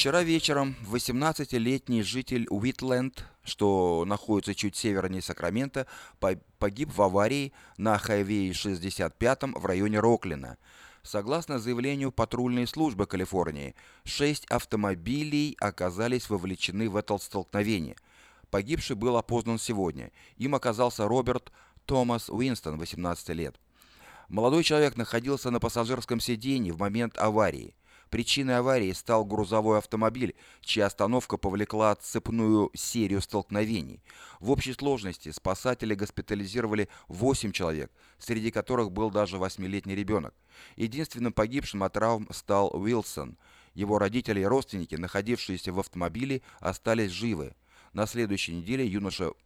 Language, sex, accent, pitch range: Russian, male, native, 100-125 Hz